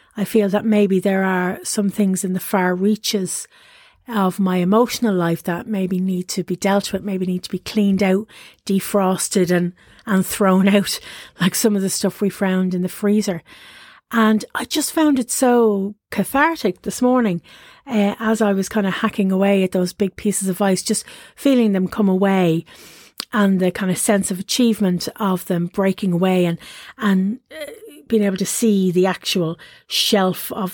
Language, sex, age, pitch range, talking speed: English, female, 40-59, 185-215 Hz, 185 wpm